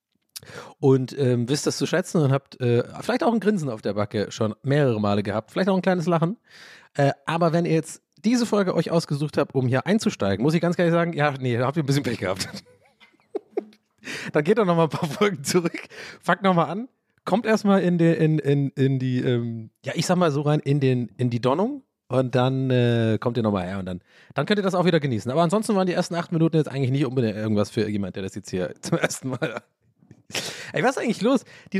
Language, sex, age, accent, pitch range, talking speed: German, male, 30-49, German, 125-185 Hz, 240 wpm